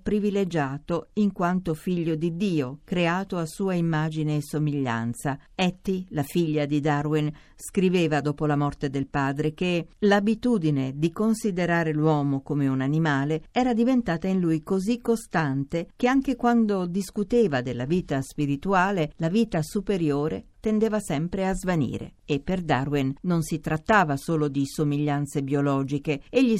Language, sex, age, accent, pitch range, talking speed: Italian, female, 50-69, native, 150-210 Hz, 140 wpm